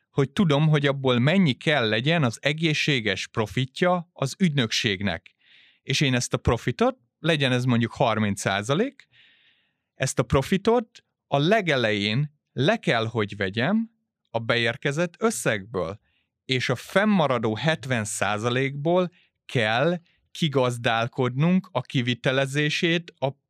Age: 30-49